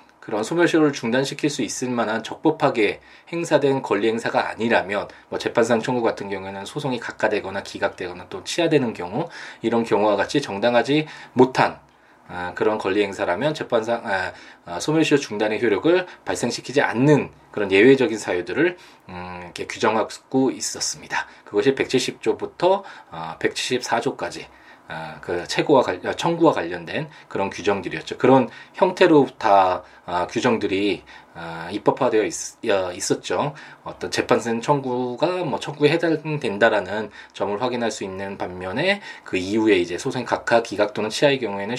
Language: Korean